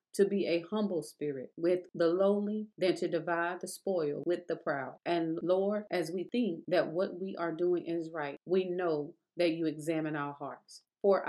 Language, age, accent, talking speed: English, 30-49, American, 190 wpm